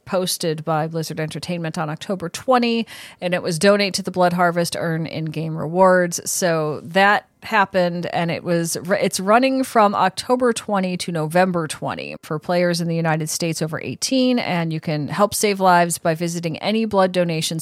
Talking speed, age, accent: 175 wpm, 30-49, American